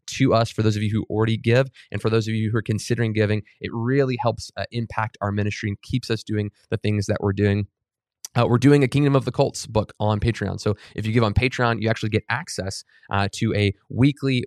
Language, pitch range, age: English, 100-115 Hz, 20-39